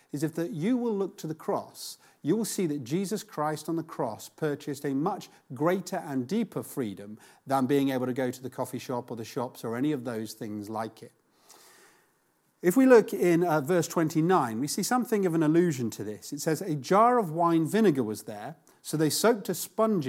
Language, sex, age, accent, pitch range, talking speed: English, male, 40-59, British, 130-175 Hz, 220 wpm